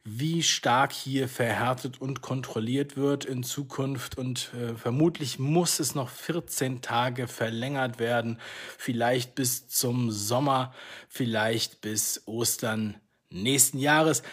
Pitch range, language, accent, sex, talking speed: 115-145 Hz, German, German, male, 115 wpm